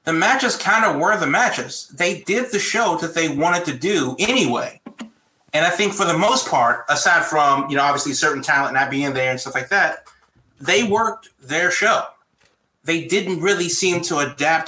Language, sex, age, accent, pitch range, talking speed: English, male, 30-49, American, 140-180 Hz, 195 wpm